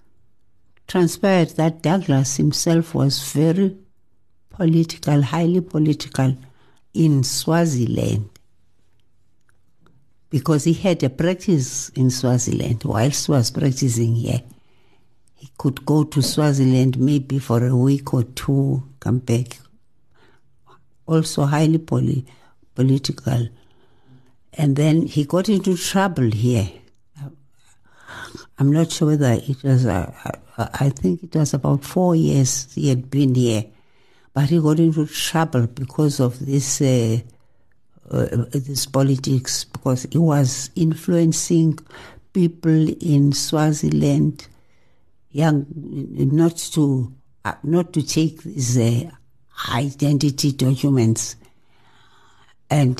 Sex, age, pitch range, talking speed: female, 60-79, 120-155 Hz, 110 wpm